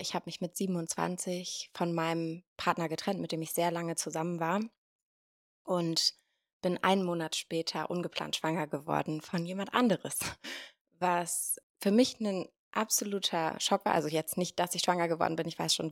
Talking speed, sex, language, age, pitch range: 170 wpm, female, German, 20-39, 165-190 Hz